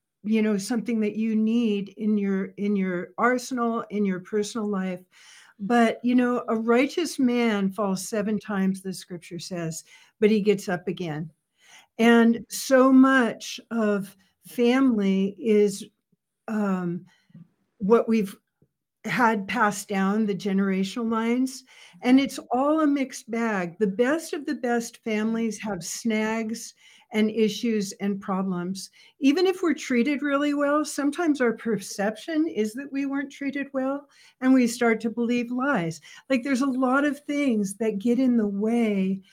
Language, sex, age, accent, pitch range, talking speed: English, female, 60-79, American, 200-240 Hz, 150 wpm